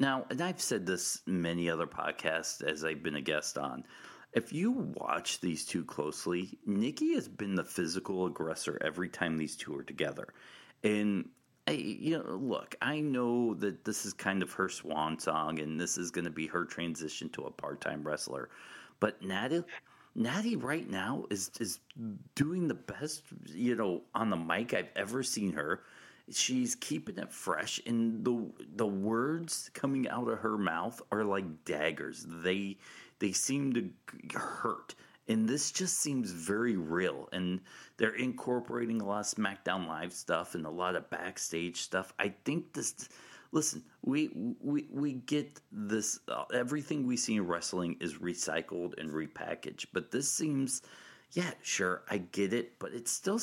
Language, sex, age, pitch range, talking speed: English, male, 40-59, 90-140 Hz, 165 wpm